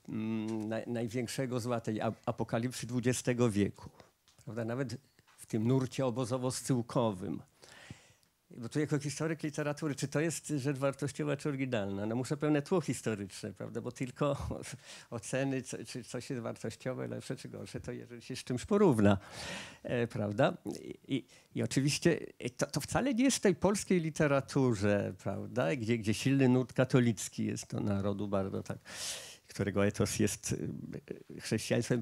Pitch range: 115-150 Hz